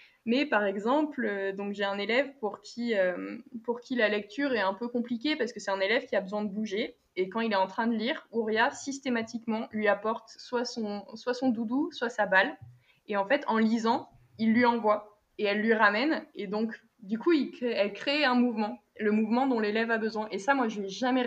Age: 20-39